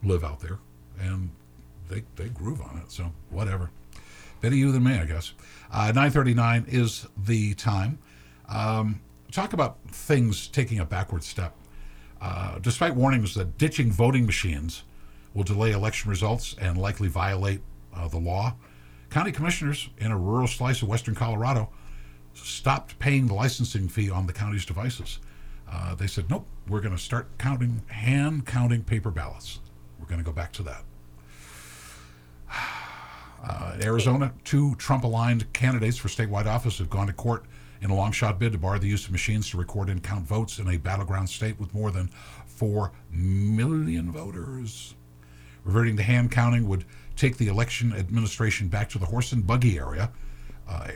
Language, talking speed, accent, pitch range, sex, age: English, 165 wpm, American, 85-115 Hz, male, 50-69